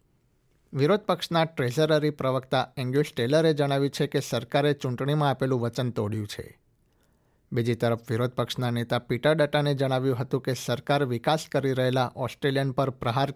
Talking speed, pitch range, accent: 135 wpm, 120-145 Hz, native